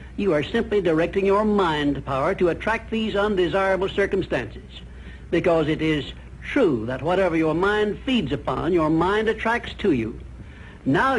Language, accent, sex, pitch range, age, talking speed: English, American, male, 140-200 Hz, 60-79, 150 wpm